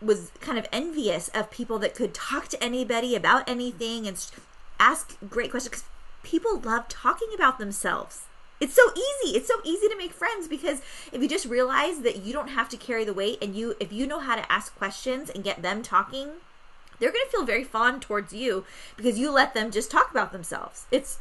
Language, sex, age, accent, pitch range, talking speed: English, female, 20-39, American, 210-290 Hz, 210 wpm